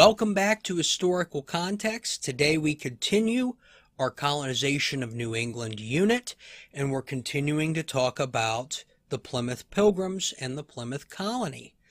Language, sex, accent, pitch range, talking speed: English, male, American, 135-190 Hz, 135 wpm